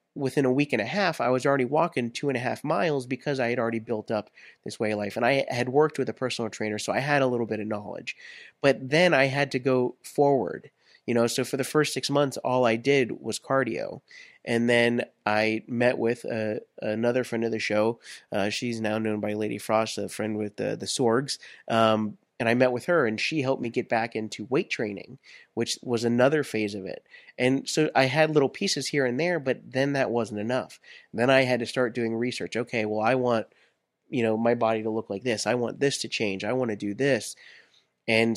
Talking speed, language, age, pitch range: 235 wpm, English, 30-49, 110-135 Hz